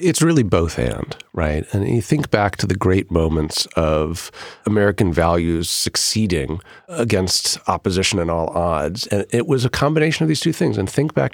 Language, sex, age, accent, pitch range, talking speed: English, male, 40-59, American, 95-130 Hz, 180 wpm